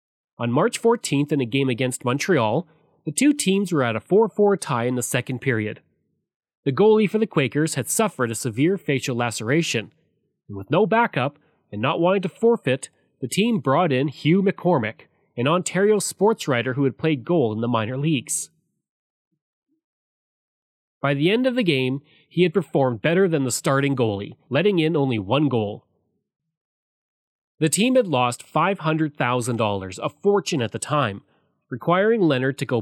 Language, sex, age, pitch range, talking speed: English, male, 30-49, 125-180 Hz, 165 wpm